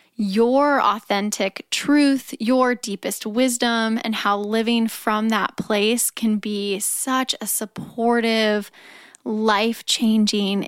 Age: 10-29